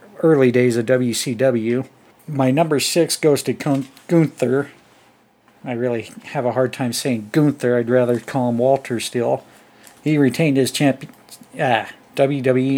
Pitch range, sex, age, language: 125-140 Hz, male, 50-69, English